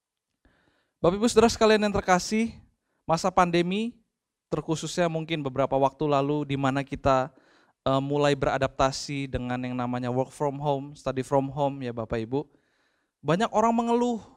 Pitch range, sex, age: 130-160 Hz, male, 20-39